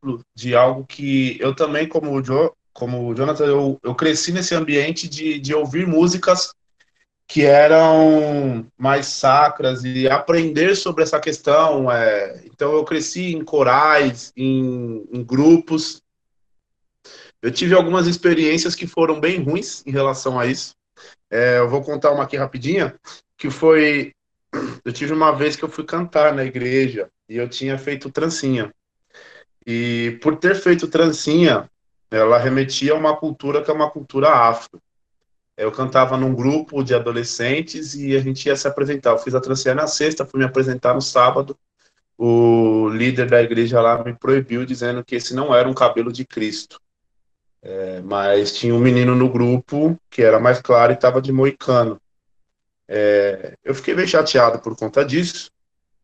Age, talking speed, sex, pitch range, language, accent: 20-39, 160 wpm, male, 125-155 Hz, Portuguese, Brazilian